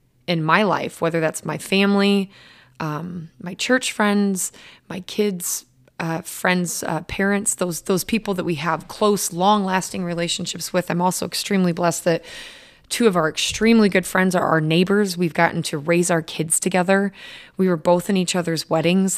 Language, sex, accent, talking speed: English, female, American, 170 wpm